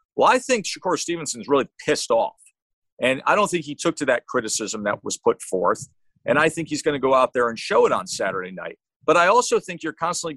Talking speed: 245 wpm